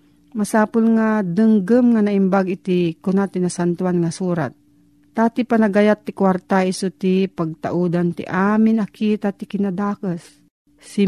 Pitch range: 170-210 Hz